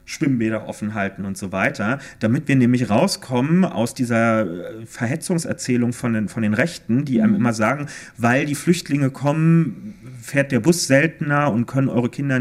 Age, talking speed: 40-59, 160 wpm